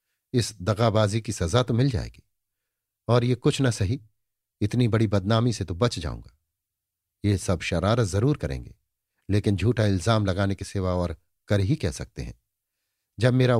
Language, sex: Hindi, male